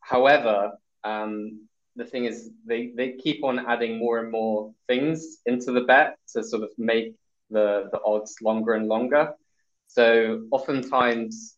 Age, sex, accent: 20-39, male, British